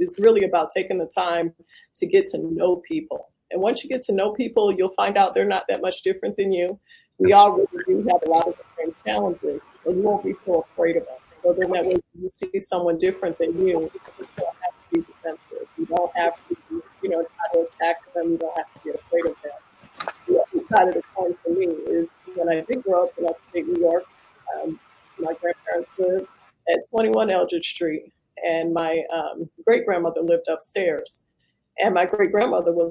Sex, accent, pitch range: female, American, 170-230 Hz